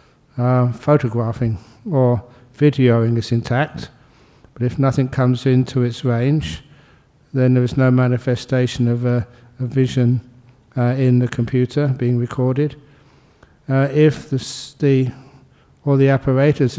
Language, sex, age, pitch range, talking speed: English, male, 60-79, 125-135 Hz, 120 wpm